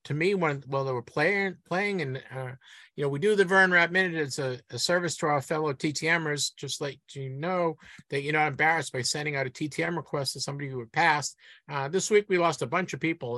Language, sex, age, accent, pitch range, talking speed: English, male, 50-69, American, 140-180 Hz, 245 wpm